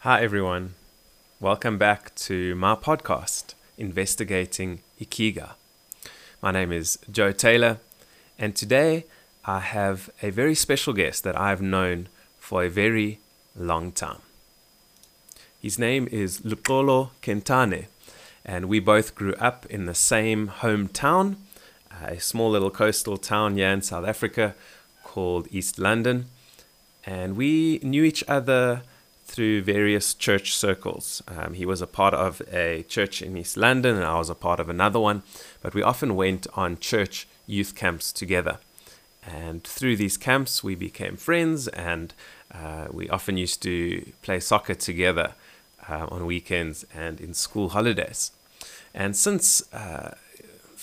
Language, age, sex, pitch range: English, 20-39, male, 90-115 Hz